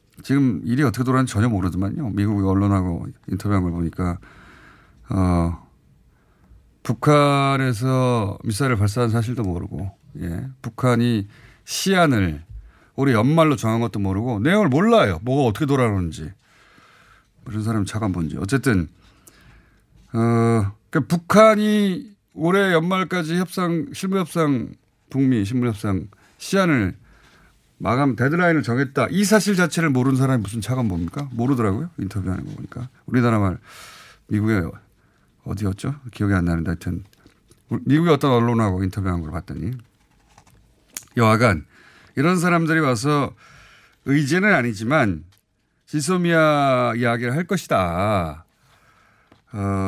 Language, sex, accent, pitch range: Korean, male, native, 100-145 Hz